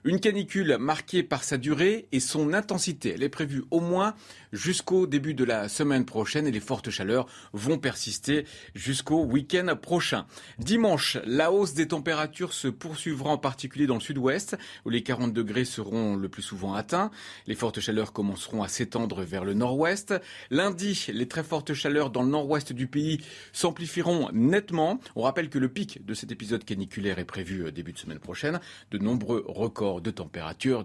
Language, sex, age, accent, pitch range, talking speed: French, male, 40-59, French, 110-160 Hz, 180 wpm